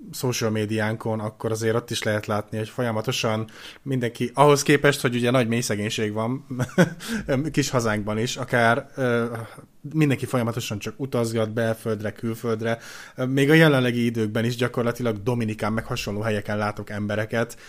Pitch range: 110-130 Hz